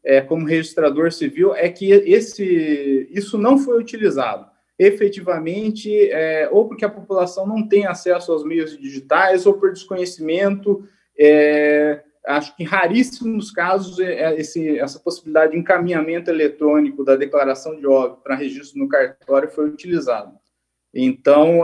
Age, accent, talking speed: 20-39, Brazilian, 140 wpm